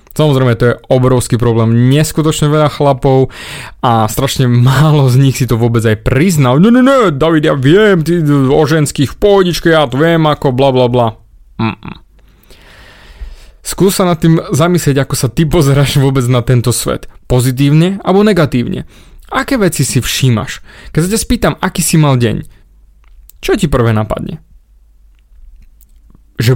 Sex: male